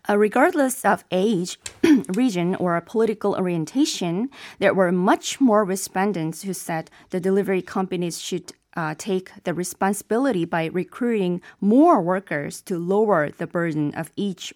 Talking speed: 135 wpm